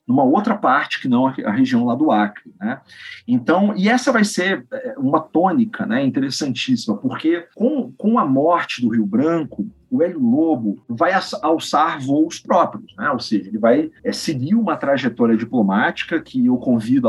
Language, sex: Portuguese, male